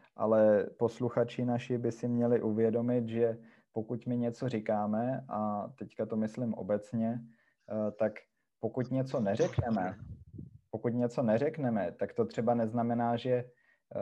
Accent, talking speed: native, 125 wpm